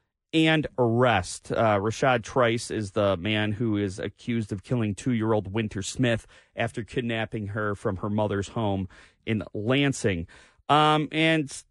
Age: 30-49